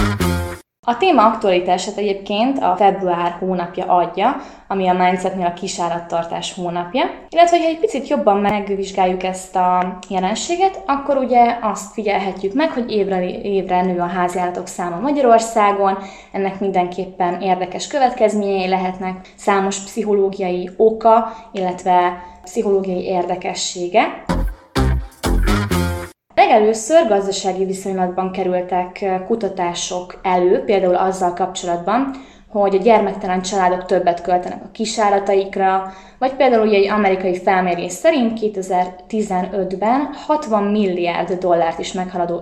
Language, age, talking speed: Hungarian, 20-39, 110 wpm